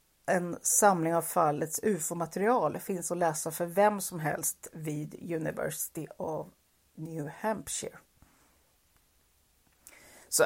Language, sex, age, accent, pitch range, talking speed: Swedish, female, 40-59, native, 160-200 Hz, 105 wpm